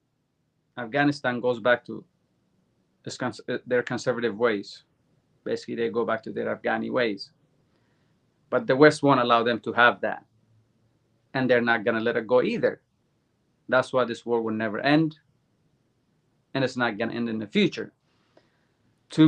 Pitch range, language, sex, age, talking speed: 120-150 Hz, English, male, 30-49, 150 wpm